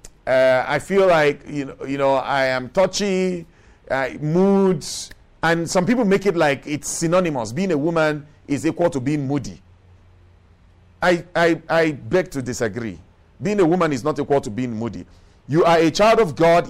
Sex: male